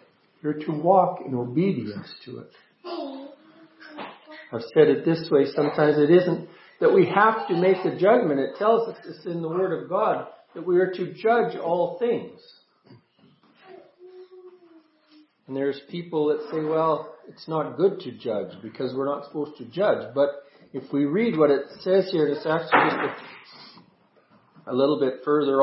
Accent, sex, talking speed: American, male, 165 wpm